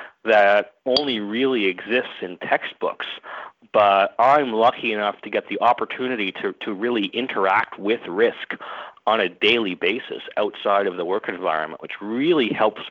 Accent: American